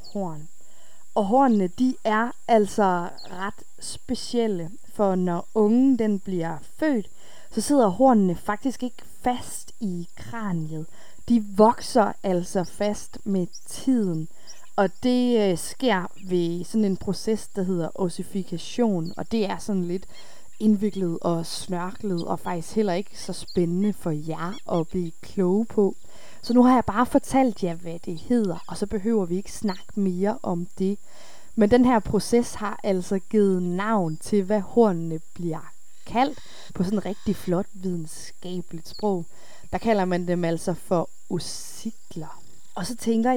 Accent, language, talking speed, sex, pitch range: native, Danish, 150 wpm, female, 180-225 Hz